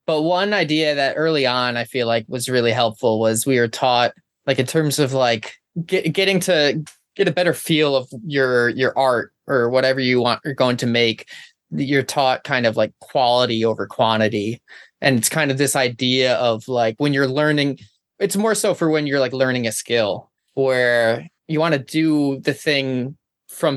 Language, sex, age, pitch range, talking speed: English, male, 20-39, 120-145 Hz, 190 wpm